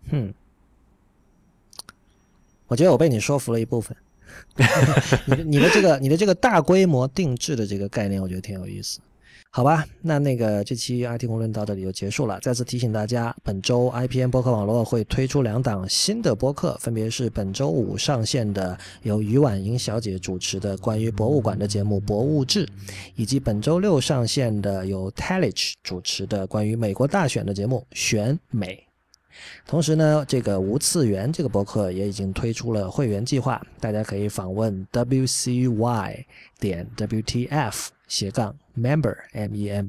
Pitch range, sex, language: 100-130 Hz, male, Chinese